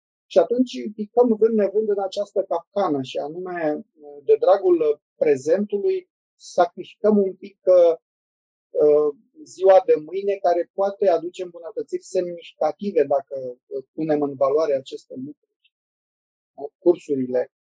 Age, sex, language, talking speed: 30-49, male, Romanian, 105 wpm